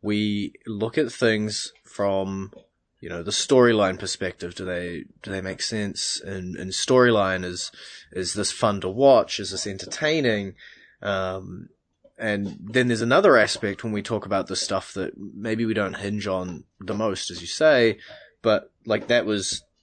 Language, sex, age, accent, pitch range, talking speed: English, male, 20-39, Australian, 95-110 Hz, 165 wpm